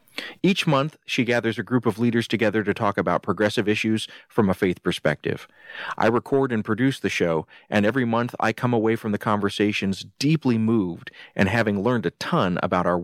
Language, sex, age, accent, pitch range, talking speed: English, male, 40-59, American, 105-125 Hz, 195 wpm